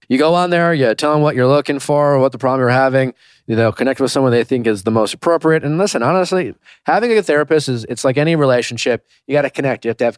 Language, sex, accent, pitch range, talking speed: English, male, American, 120-160 Hz, 285 wpm